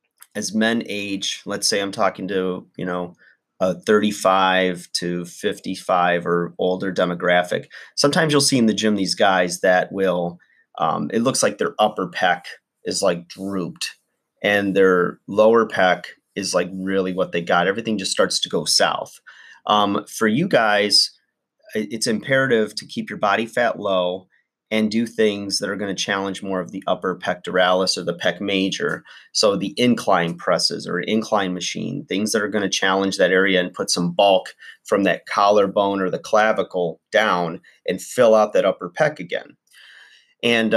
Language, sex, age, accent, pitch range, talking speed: English, male, 30-49, American, 90-110 Hz, 170 wpm